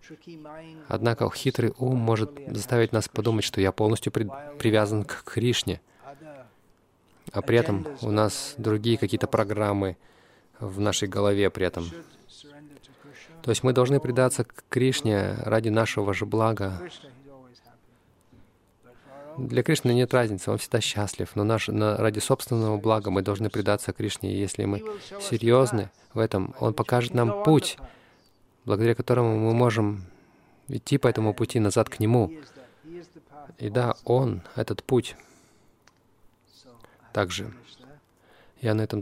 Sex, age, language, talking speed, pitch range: male, 20-39, Russian, 130 wpm, 105-125 Hz